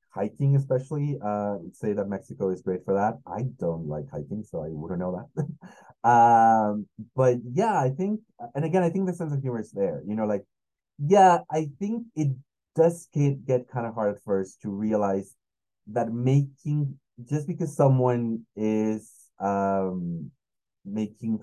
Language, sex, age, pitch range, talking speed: English, male, 30-49, 100-135 Hz, 160 wpm